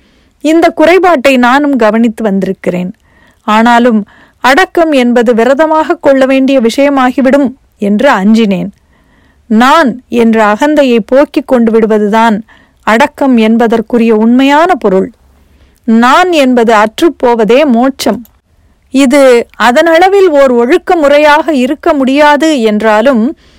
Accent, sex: native, female